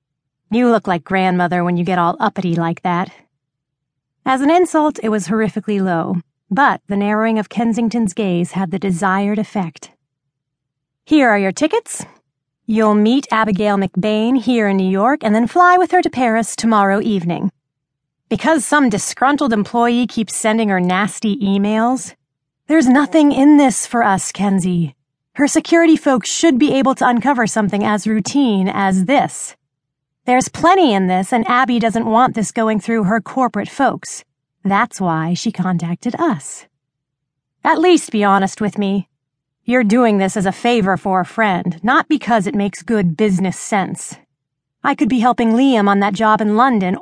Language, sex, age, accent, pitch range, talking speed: English, female, 30-49, American, 180-240 Hz, 165 wpm